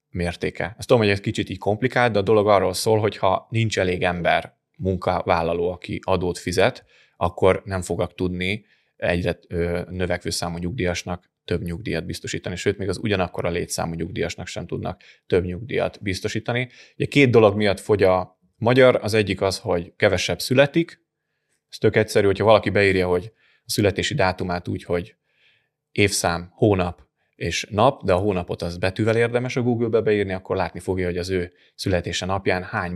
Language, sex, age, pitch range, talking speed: Hungarian, male, 20-39, 90-110 Hz, 165 wpm